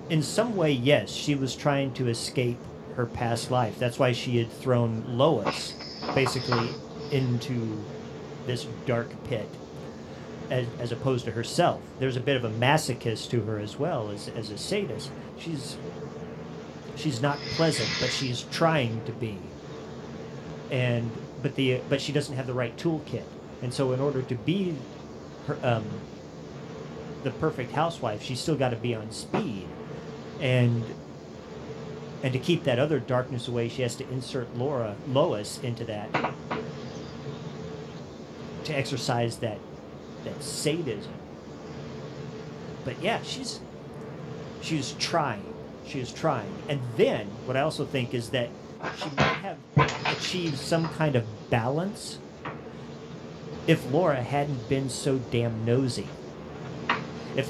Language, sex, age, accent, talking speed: English, male, 40-59, American, 140 wpm